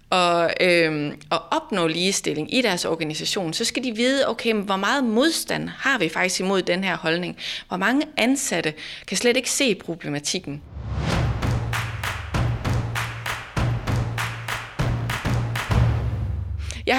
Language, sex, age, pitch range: Danish, female, 30-49, 155-225 Hz